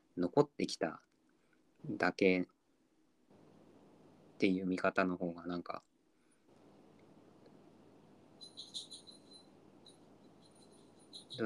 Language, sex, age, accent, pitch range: Japanese, male, 20-39, native, 90-105 Hz